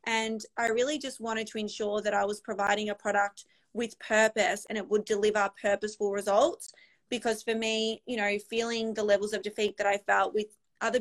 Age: 20-39